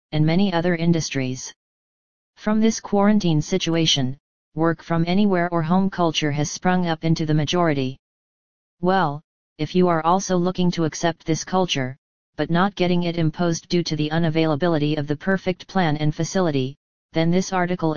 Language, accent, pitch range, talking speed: English, American, 155-185 Hz, 160 wpm